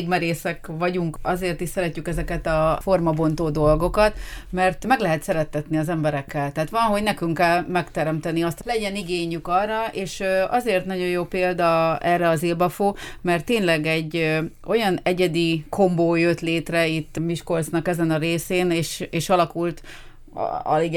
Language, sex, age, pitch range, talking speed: Hungarian, female, 30-49, 160-180 Hz, 140 wpm